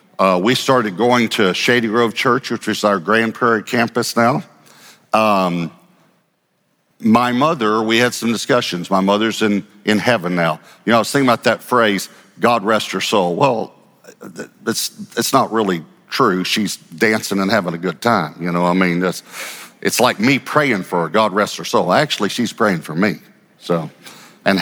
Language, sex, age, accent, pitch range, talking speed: English, male, 50-69, American, 100-130 Hz, 185 wpm